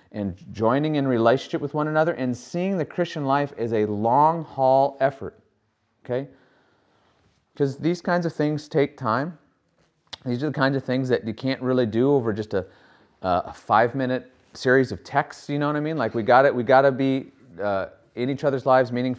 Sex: male